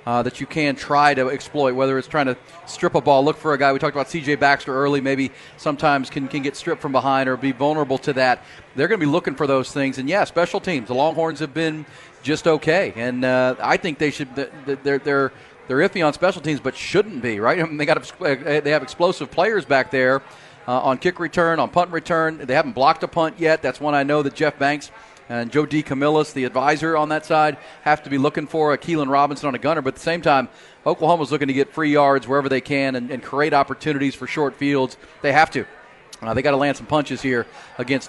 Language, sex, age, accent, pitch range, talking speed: English, male, 40-59, American, 135-155 Hz, 255 wpm